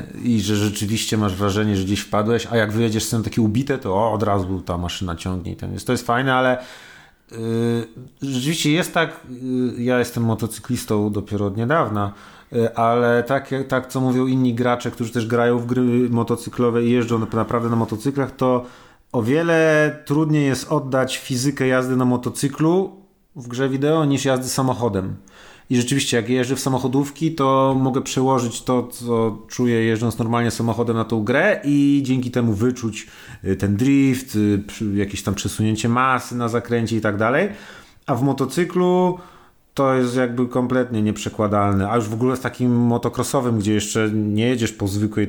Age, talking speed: 30-49, 170 wpm